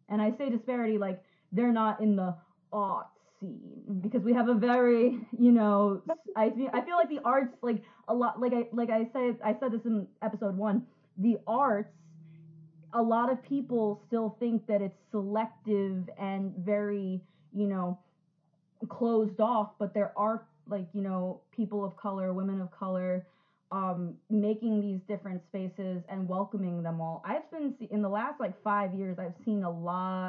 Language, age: English, 20-39